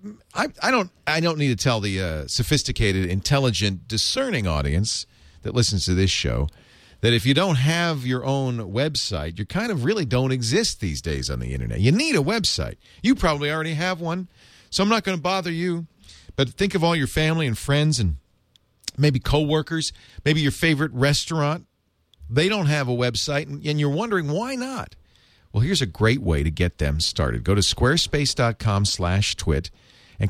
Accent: American